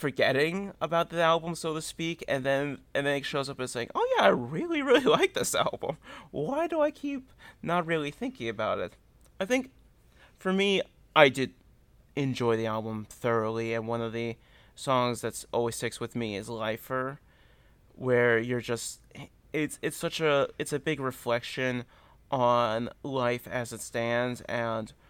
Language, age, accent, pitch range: English, 30-49, American, 115-145 Hz